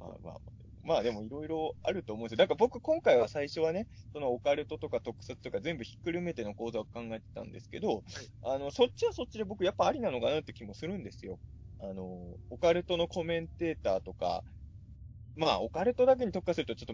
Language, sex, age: Japanese, male, 20-39